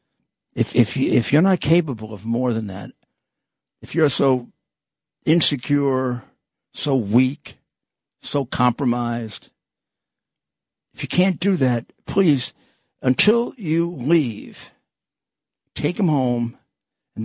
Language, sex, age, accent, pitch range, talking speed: English, male, 60-79, American, 115-150 Hz, 110 wpm